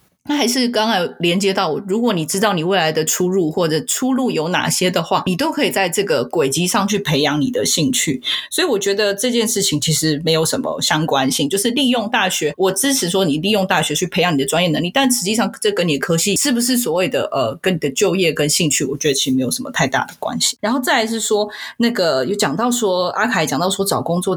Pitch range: 165-235 Hz